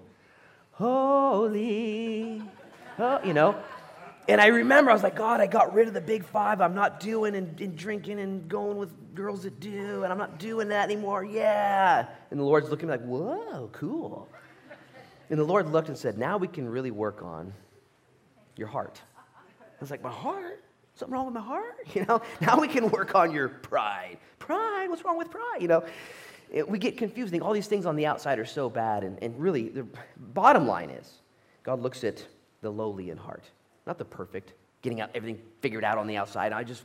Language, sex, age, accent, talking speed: English, male, 30-49, American, 205 wpm